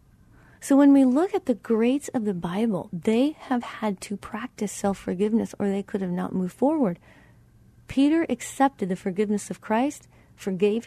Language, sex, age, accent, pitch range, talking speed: English, female, 40-59, American, 200-250 Hz, 165 wpm